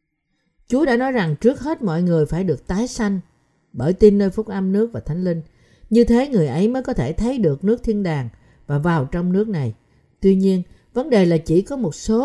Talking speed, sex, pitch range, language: 230 wpm, female, 145-210 Hz, Vietnamese